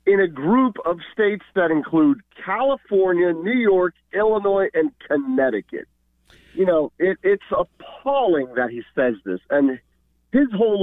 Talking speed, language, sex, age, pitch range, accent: 135 wpm, English, male, 40-59, 140-235 Hz, American